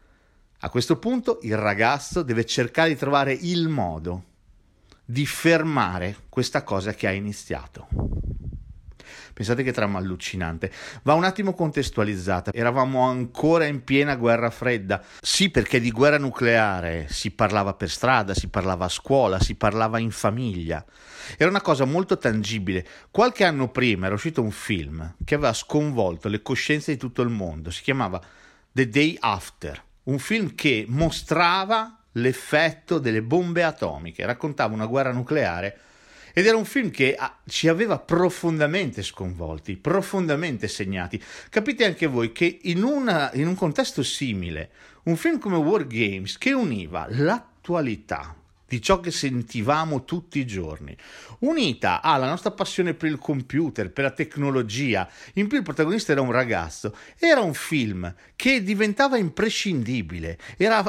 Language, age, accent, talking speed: Italian, 50-69, native, 145 wpm